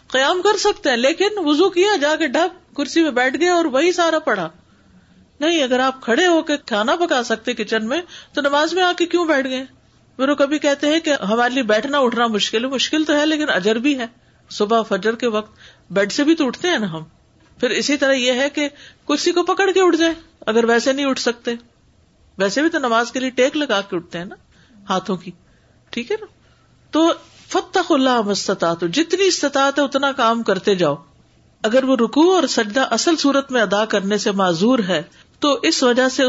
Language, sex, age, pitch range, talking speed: Urdu, female, 50-69, 220-305 Hz, 210 wpm